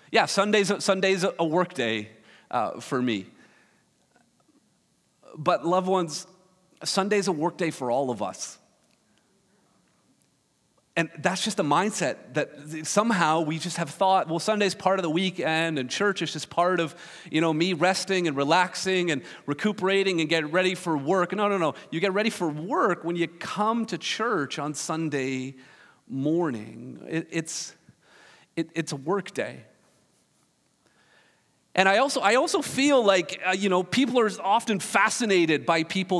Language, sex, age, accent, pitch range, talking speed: English, male, 40-59, American, 165-225 Hz, 155 wpm